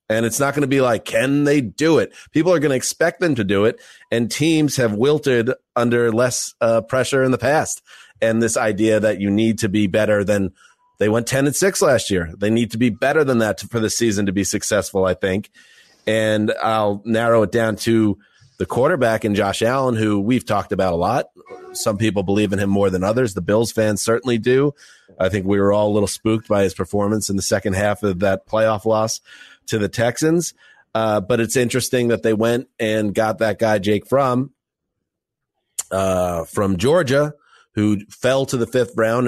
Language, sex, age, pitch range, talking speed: English, male, 30-49, 100-115 Hz, 210 wpm